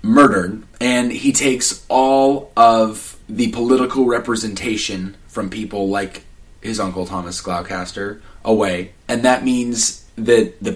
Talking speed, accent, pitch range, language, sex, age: 125 wpm, American, 95-115 Hz, English, male, 30-49